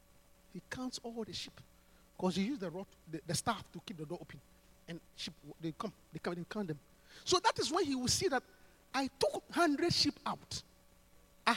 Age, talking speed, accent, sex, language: 50-69, 200 wpm, Nigerian, male, English